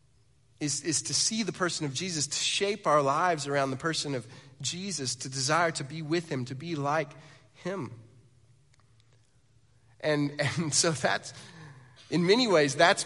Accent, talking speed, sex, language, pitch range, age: American, 160 wpm, male, English, 135-175 Hz, 30-49